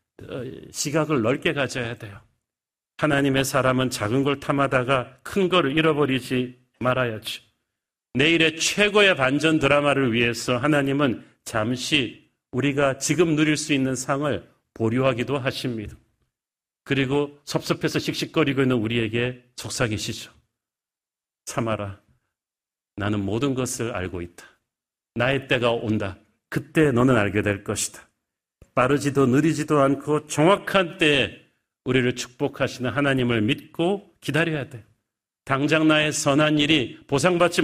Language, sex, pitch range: Korean, male, 120-155 Hz